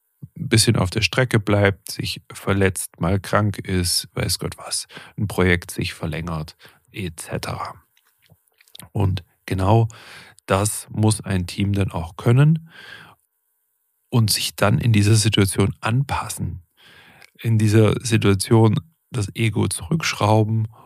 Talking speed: 120 wpm